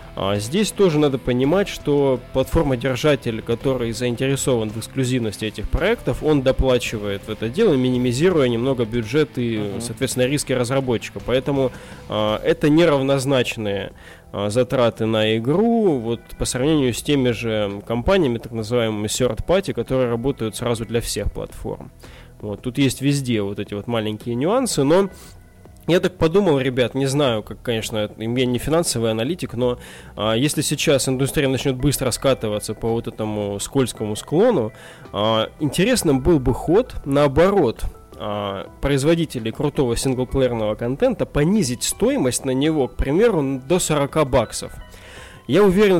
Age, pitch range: 20-39, 115-145 Hz